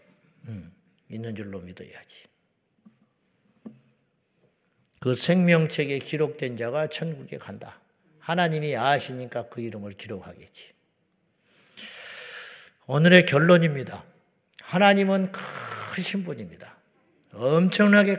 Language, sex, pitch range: Korean, male, 125-180 Hz